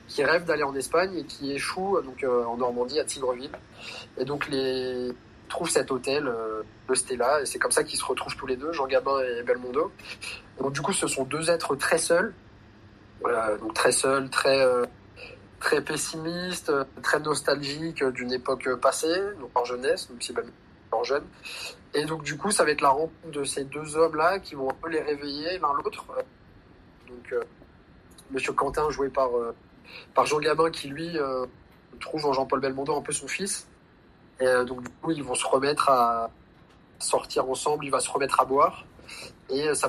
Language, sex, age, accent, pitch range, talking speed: French, male, 20-39, French, 125-165 Hz, 190 wpm